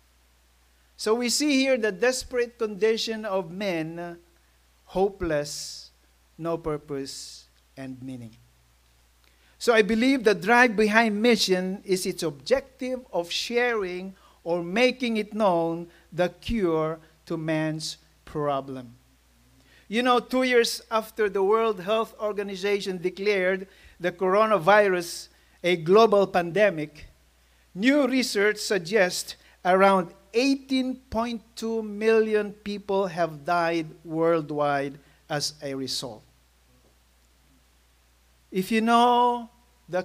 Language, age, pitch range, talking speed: English, 50-69, 130-215 Hz, 100 wpm